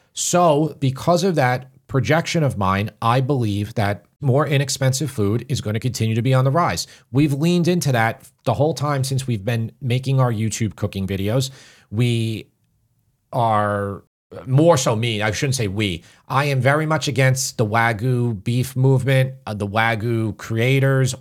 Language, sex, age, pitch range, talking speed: English, male, 40-59, 110-135 Hz, 165 wpm